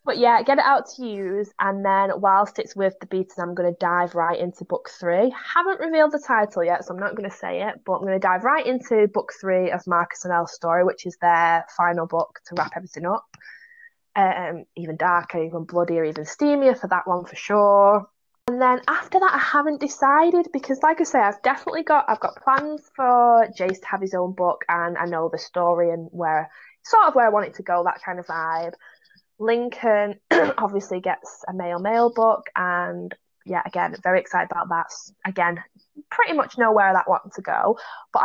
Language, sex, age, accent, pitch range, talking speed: English, female, 20-39, British, 175-245 Hz, 215 wpm